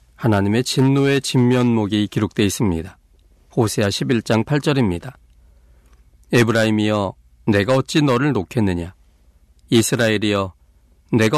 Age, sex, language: 40-59, male, Korean